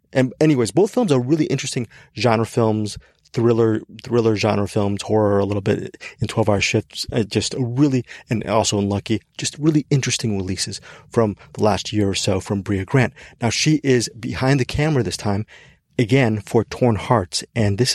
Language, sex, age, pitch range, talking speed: English, male, 30-49, 105-130 Hz, 180 wpm